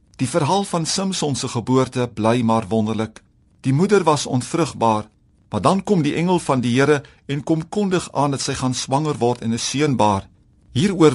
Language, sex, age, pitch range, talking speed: Dutch, male, 50-69, 120-165 Hz, 180 wpm